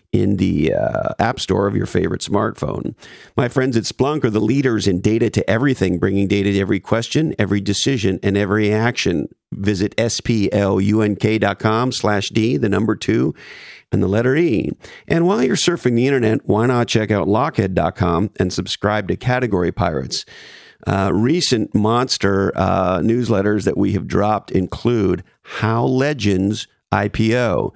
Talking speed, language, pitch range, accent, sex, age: 150 wpm, English, 100-120 Hz, American, male, 50-69